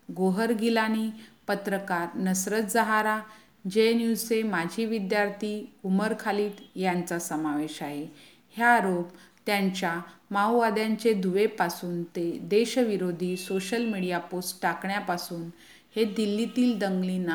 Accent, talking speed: native, 75 wpm